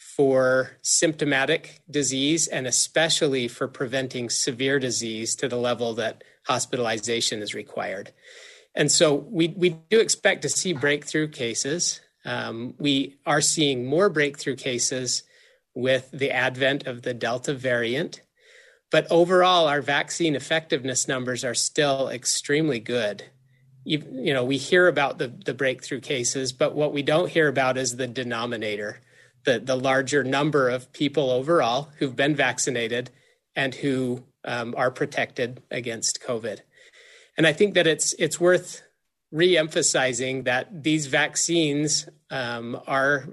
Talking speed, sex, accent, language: 135 wpm, male, American, English